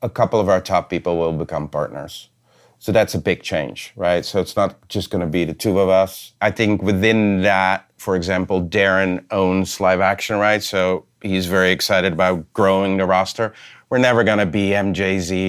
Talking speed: 200 wpm